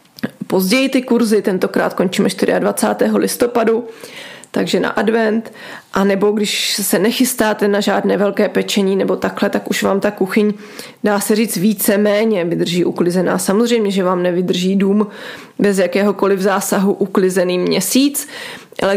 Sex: female